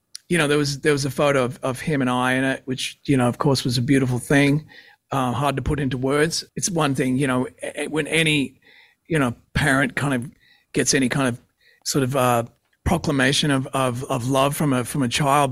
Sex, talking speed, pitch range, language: male, 230 wpm, 130-150 Hz, English